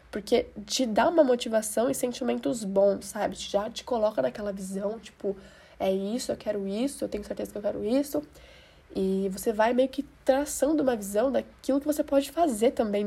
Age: 10-29